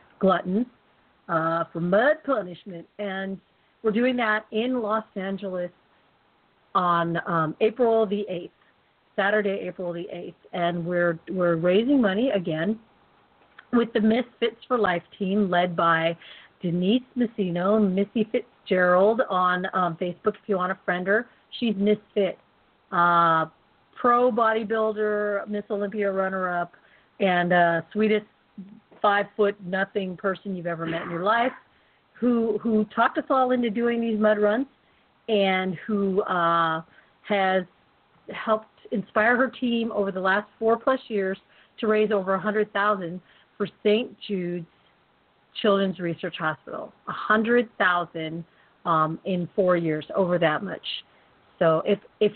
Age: 40-59